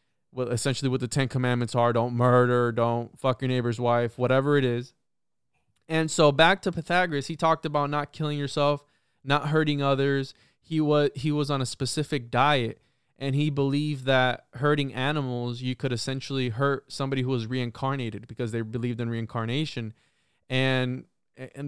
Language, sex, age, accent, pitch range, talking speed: English, male, 20-39, American, 125-145 Hz, 165 wpm